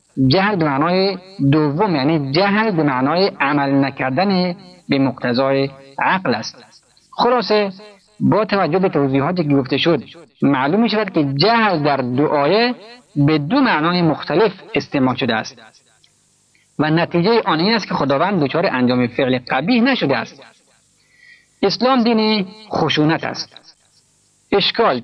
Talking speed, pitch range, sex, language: 125 wpm, 145-200 Hz, male, Persian